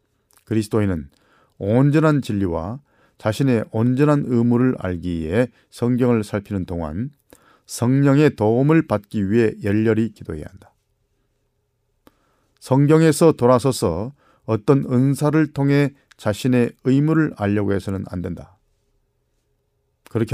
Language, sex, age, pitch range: Korean, male, 40-59, 105-135 Hz